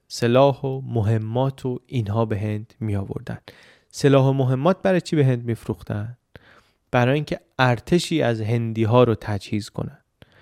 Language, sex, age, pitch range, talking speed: Persian, male, 20-39, 110-140 Hz, 150 wpm